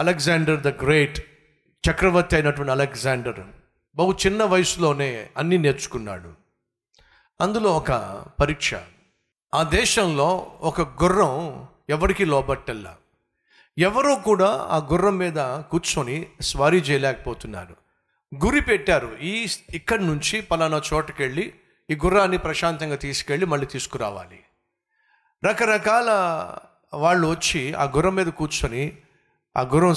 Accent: native